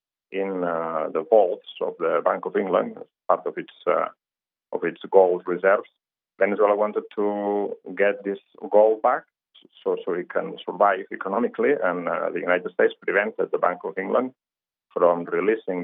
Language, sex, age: English, male, 40-59